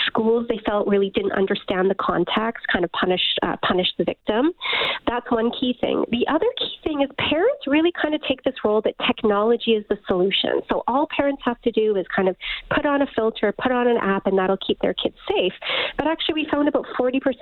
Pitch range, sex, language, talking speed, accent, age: 200-275 Hz, female, English, 220 wpm, American, 40-59